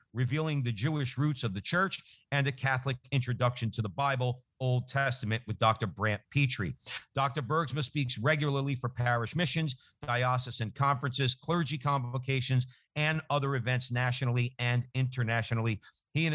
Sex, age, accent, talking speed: male, 50-69, American, 145 wpm